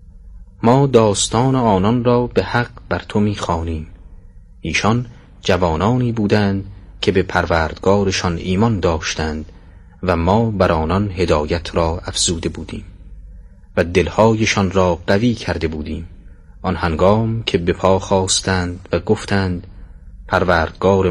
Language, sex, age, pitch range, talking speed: Persian, male, 30-49, 85-105 Hz, 115 wpm